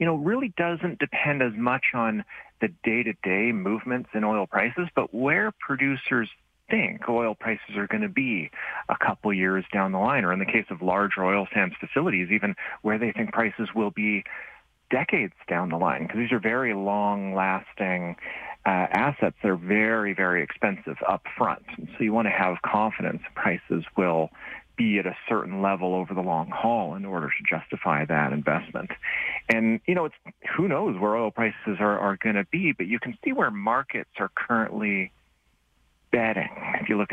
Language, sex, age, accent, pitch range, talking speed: English, male, 40-59, American, 95-120 Hz, 185 wpm